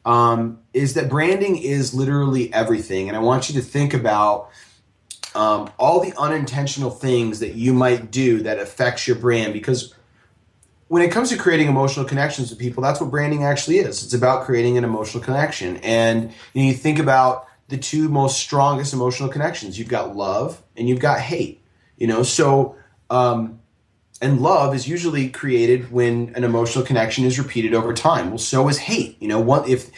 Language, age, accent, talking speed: English, 30-49, American, 185 wpm